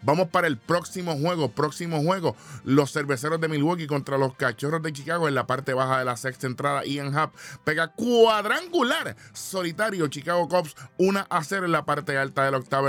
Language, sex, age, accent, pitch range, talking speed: Spanish, male, 20-39, American, 140-170 Hz, 190 wpm